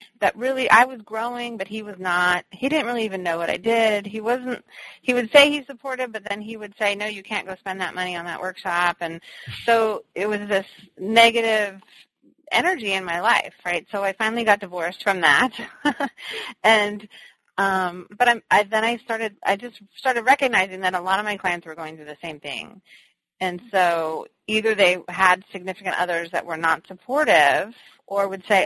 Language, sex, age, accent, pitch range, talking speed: English, female, 30-49, American, 180-225 Hz, 195 wpm